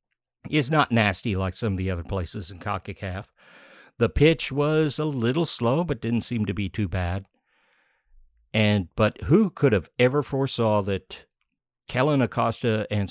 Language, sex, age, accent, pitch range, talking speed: English, male, 50-69, American, 100-130 Hz, 165 wpm